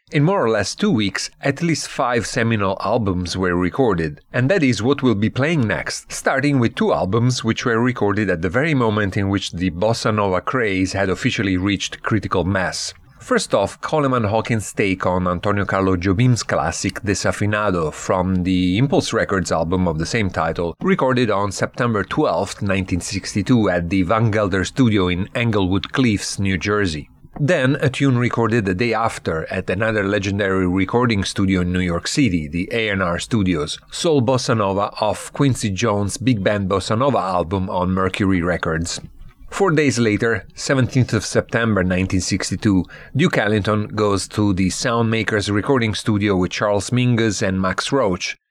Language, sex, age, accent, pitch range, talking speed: English, male, 40-59, Italian, 95-120 Hz, 165 wpm